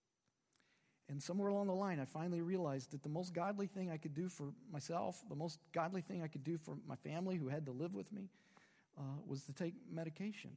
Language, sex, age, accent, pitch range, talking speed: English, male, 40-59, American, 145-200 Hz, 220 wpm